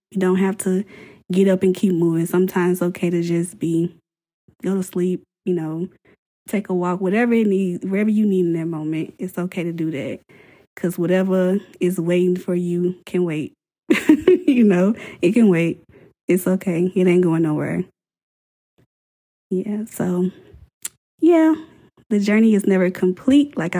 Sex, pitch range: female, 165-185 Hz